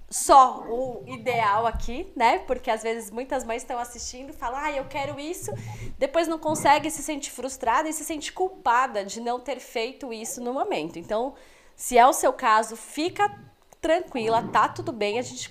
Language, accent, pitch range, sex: Portuguese, Brazilian, 220-310 Hz, female